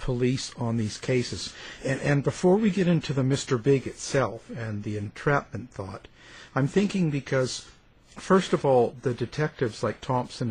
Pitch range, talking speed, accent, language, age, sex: 110-140 Hz, 160 wpm, American, English, 50-69, male